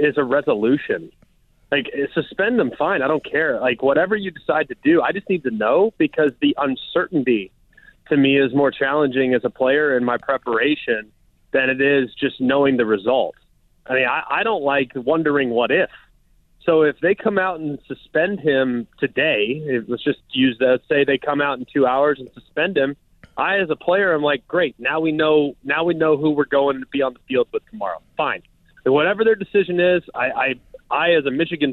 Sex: male